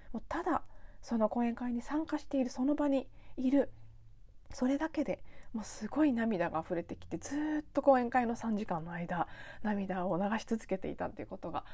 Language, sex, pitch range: Japanese, female, 190-260 Hz